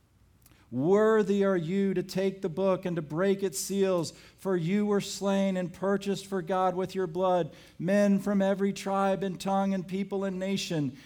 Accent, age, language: American, 40-59, English